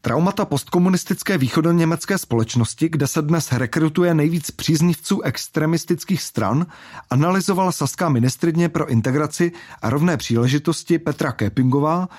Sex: male